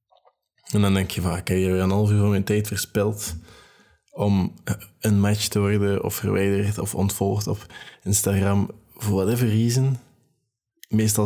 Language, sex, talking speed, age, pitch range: Dutch, male, 155 wpm, 20-39, 95-110 Hz